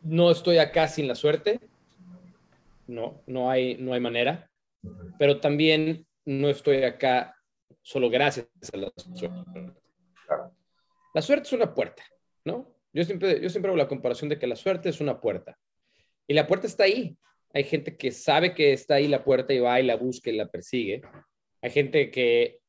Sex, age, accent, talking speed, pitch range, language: male, 30-49, Mexican, 175 wpm, 125-175 Hz, Spanish